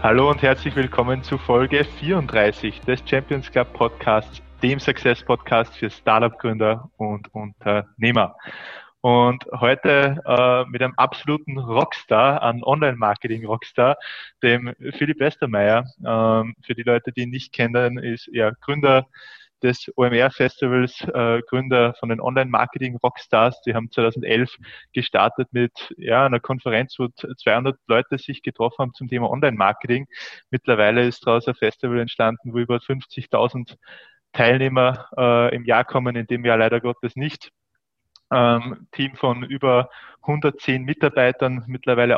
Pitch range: 115-130 Hz